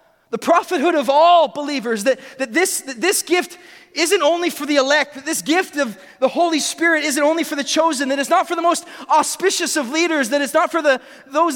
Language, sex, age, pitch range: Japanese, male, 20-39, 265-335 Hz